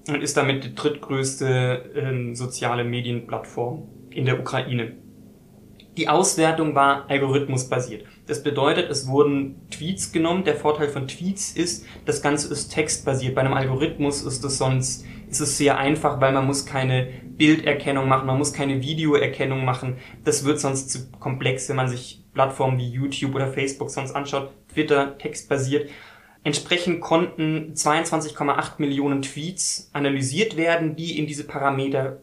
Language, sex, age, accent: German, male, 20-39, German